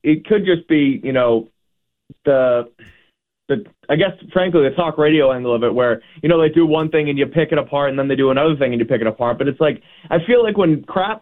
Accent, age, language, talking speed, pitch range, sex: American, 20-39, English, 255 wpm, 125-160 Hz, male